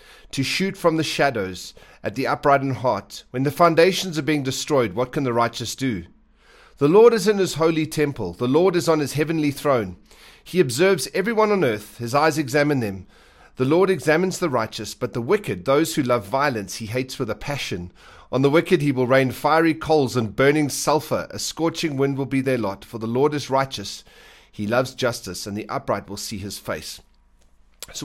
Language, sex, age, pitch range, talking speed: English, male, 40-59, 125-170 Hz, 205 wpm